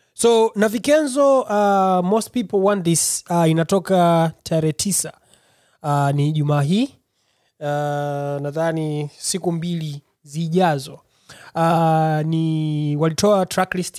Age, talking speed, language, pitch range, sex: 20-39, 105 wpm, Swahili, 150-180 Hz, male